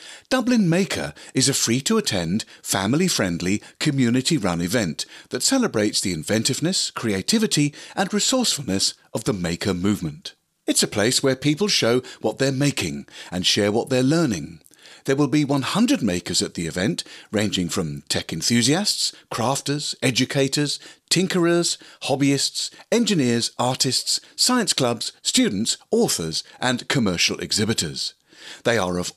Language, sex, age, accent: English, male, 40-59, British